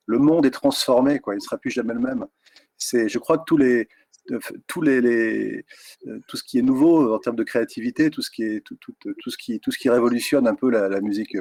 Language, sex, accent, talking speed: French, male, French, 250 wpm